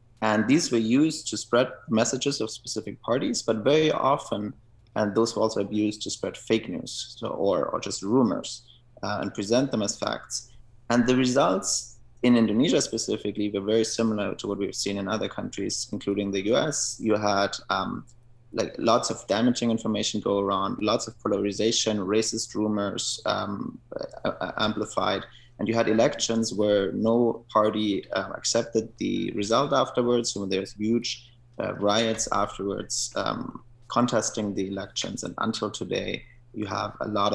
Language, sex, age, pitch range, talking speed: English, male, 20-39, 105-120 Hz, 155 wpm